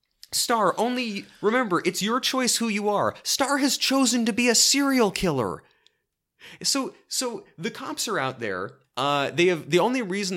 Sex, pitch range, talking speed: male, 115-170 Hz, 175 wpm